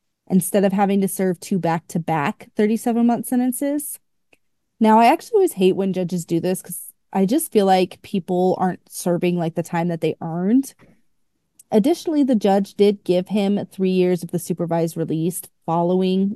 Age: 30-49